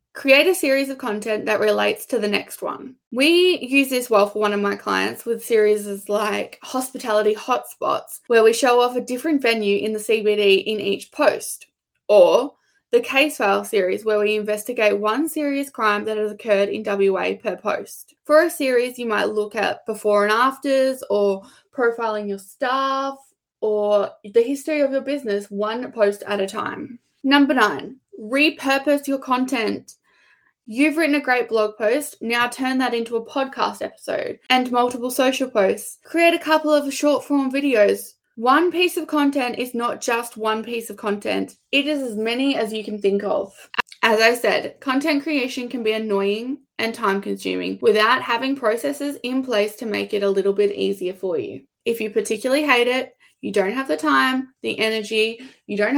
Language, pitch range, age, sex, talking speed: English, 210-270 Hz, 10-29, female, 180 wpm